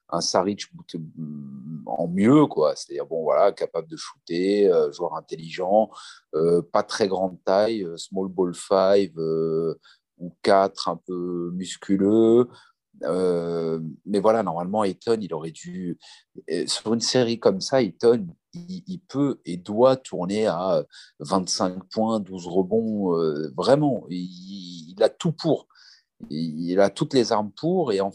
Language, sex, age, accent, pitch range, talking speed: French, male, 40-59, French, 90-120 Hz, 145 wpm